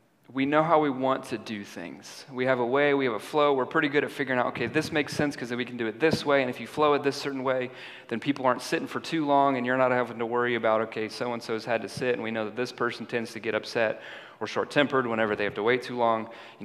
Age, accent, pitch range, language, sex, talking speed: 30-49, American, 120-145 Hz, English, male, 300 wpm